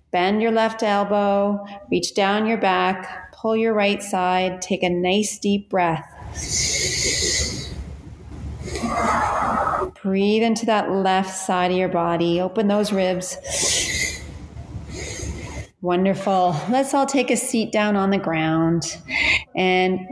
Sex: female